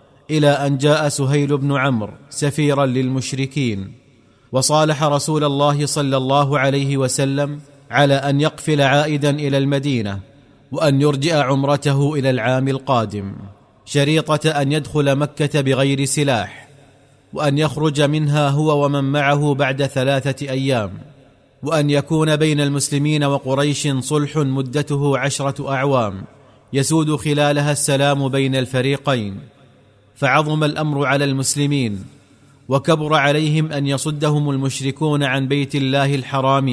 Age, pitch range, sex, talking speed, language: 30-49, 135-145 Hz, male, 115 wpm, Arabic